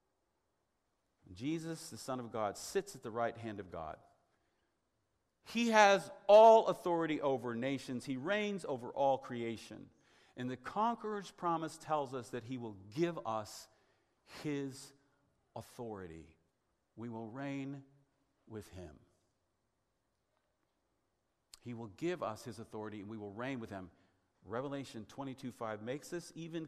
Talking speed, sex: 130 wpm, male